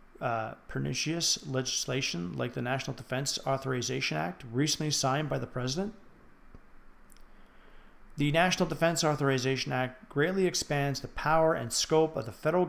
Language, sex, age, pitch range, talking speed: English, male, 40-59, 125-155 Hz, 130 wpm